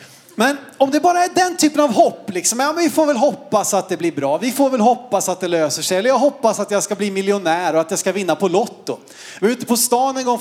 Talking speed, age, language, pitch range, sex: 290 wpm, 30-49, Swedish, 215-275 Hz, male